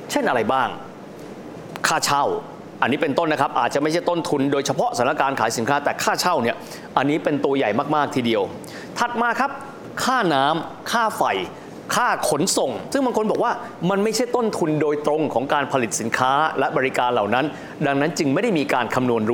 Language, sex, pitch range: Thai, male, 140-220 Hz